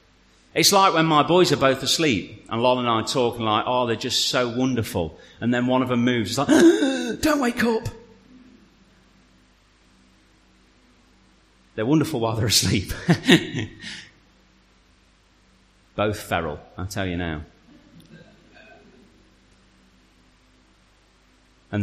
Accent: British